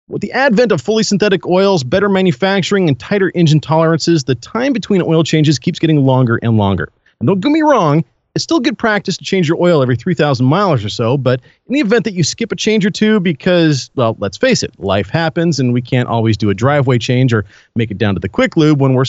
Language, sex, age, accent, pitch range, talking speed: English, male, 40-59, American, 130-190 Hz, 240 wpm